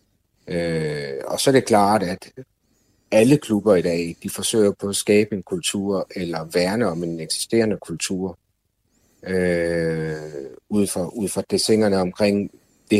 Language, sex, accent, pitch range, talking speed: Danish, male, native, 90-110 Hz, 145 wpm